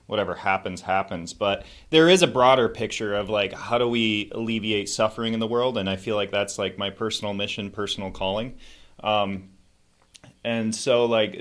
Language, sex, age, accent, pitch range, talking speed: English, male, 30-49, American, 95-120 Hz, 180 wpm